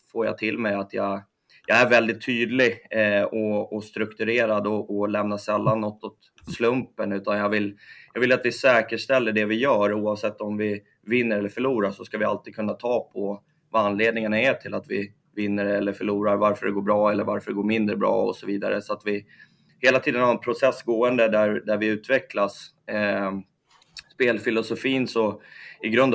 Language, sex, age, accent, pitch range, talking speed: Swedish, male, 20-39, native, 100-110 Hz, 185 wpm